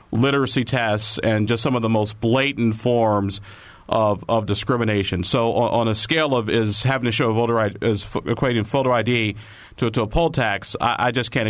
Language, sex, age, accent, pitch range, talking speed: English, male, 50-69, American, 105-130 Hz, 205 wpm